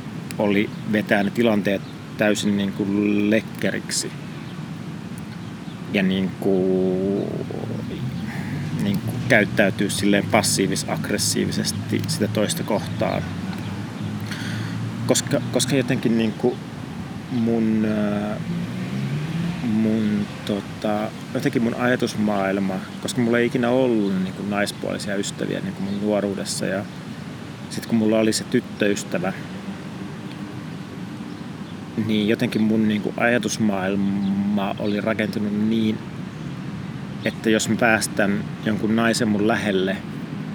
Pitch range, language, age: 100-145 Hz, Finnish, 30-49